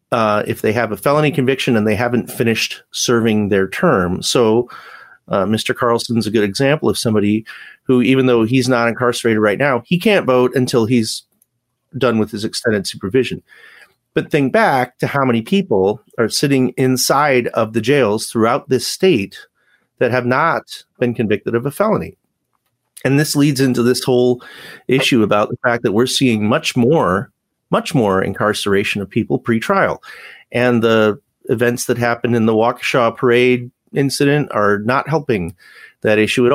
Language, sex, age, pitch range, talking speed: English, male, 40-59, 110-135 Hz, 170 wpm